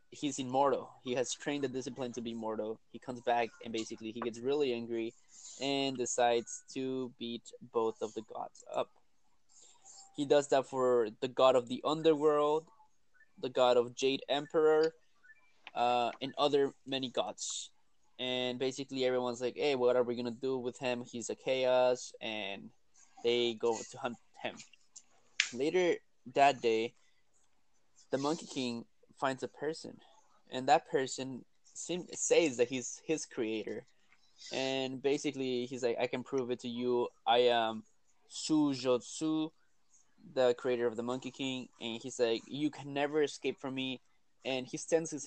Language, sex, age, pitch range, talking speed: English, male, 20-39, 120-145 Hz, 160 wpm